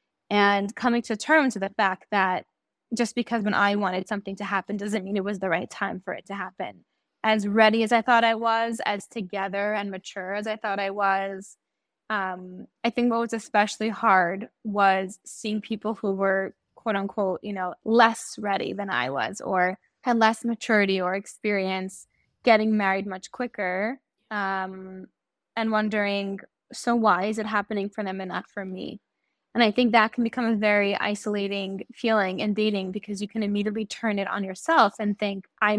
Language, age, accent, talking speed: English, 10-29, American, 185 wpm